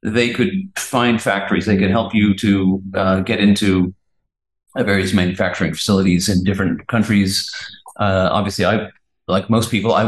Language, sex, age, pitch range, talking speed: English, male, 40-59, 95-115 Hz, 155 wpm